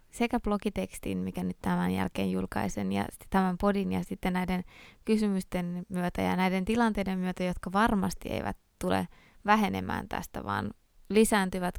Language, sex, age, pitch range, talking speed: Finnish, female, 20-39, 165-210 Hz, 145 wpm